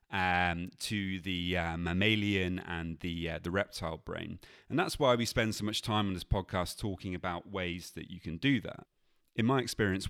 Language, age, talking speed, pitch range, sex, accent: English, 30-49, 195 wpm, 90-110 Hz, male, British